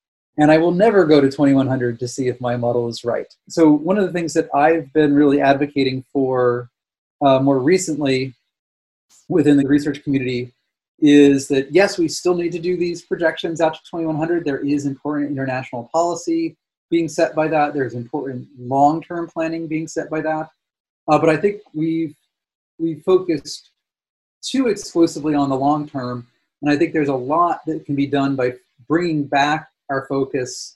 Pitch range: 135-160 Hz